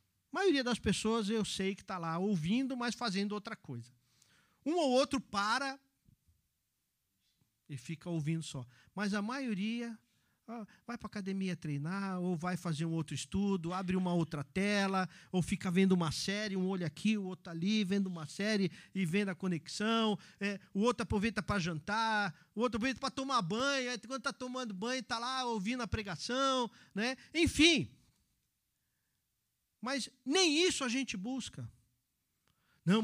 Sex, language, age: male, Portuguese, 50-69